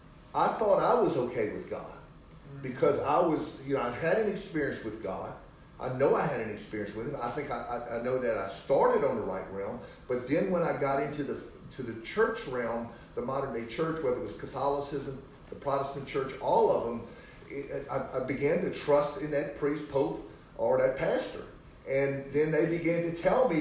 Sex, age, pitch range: male, 40-59, 140-185 Hz